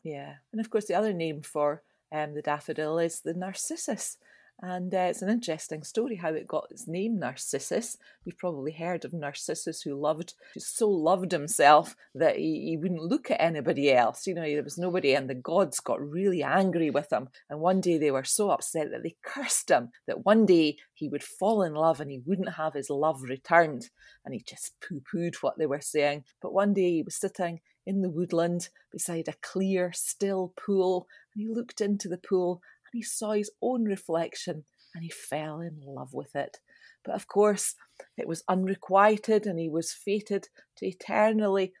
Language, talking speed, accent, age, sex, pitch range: English, 200 wpm, British, 40-59, female, 155-195 Hz